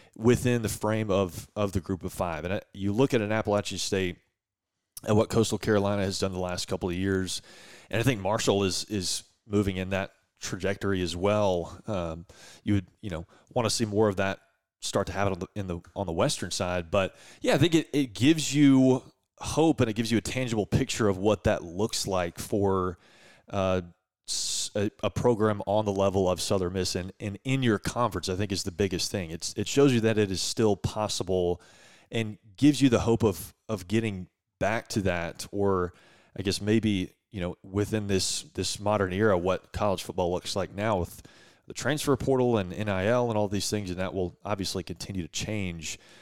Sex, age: male, 30-49